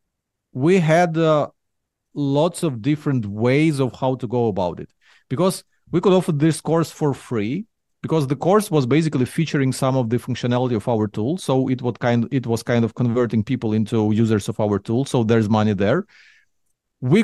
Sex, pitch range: male, 120-165 Hz